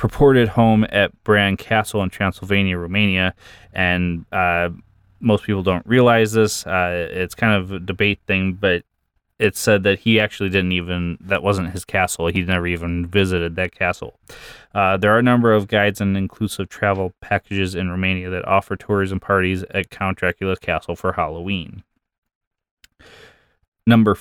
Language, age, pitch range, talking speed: English, 20-39, 90-105 Hz, 160 wpm